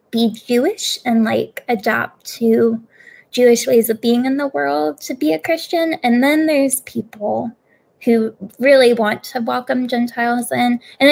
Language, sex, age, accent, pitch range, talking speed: English, female, 10-29, American, 220-265 Hz, 155 wpm